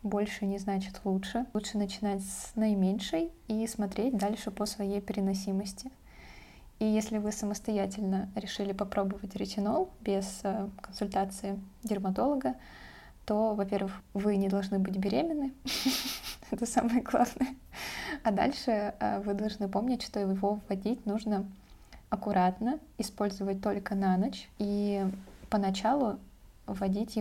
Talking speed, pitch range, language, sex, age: 115 wpm, 195-220 Hz, Russian, female, 20-39